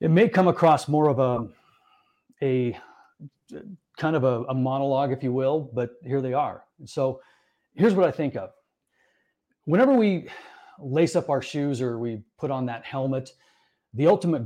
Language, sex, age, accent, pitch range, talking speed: English, male, 40-59, American, 130-155 Hz, 170 wpm